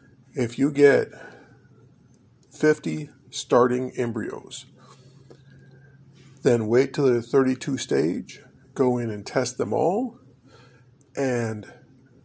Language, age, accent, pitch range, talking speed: English, 50-69, American, 120-140 Hz, 95 wpm